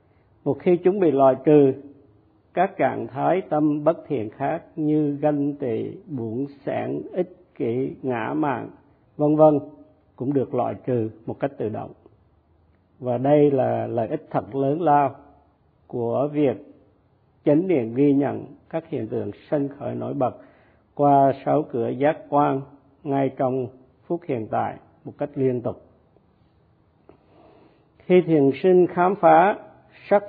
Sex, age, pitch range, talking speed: male, 50-69, 120-155 Hz, 145 wpm